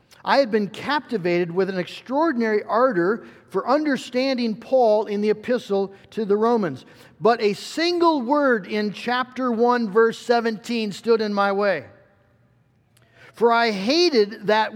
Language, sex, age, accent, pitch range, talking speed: English, male, 50-69, American, 195-245 Hz, 140 wpm